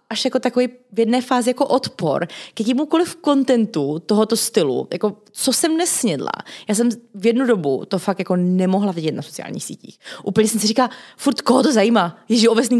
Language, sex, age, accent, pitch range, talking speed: Czech, female, 20-39, native, 190-245 Hz, 190 wpm